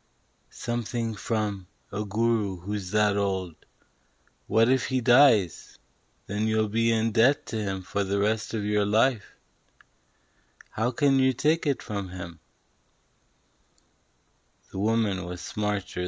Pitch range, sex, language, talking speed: 95-110 Hz, male, English, 130 wpm